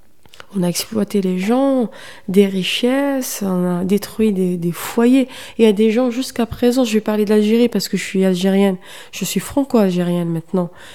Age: 20-39